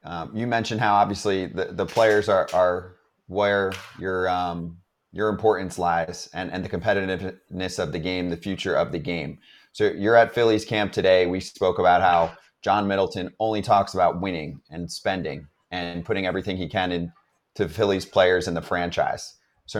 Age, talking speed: 30-49, 175 wpm